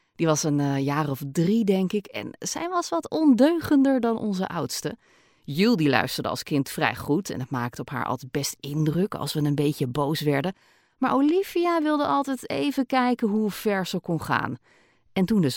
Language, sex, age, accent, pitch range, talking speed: Dutch, female, 30-49, Dutch, 145-225 Hz, 195 wpm